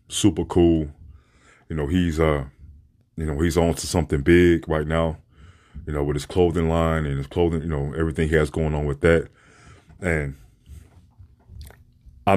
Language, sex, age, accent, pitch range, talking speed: English, male, 30-49, American, 75-85 Hz, 170 wpm